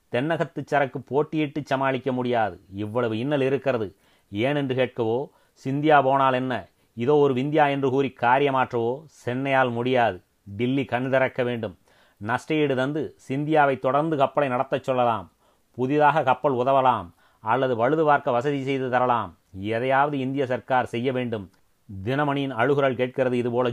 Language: Tamil